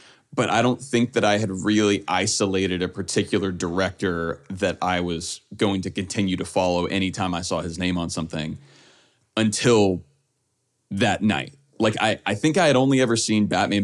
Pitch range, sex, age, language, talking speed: 95-115 Hz, male, 20-39, English, 175 wpm